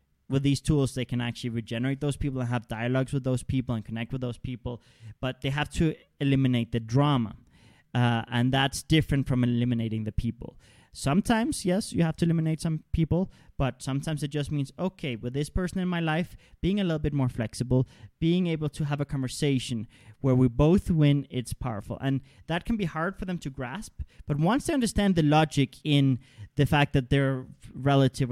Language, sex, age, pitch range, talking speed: English, male, 30-49, 125-165 Hz, 200 wpm